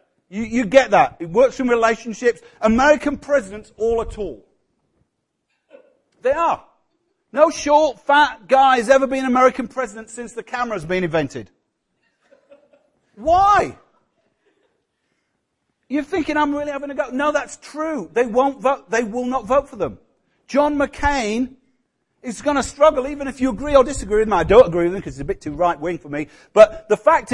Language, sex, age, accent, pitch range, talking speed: English, male, 50-69, British, 200-285 Hz, 175 wpm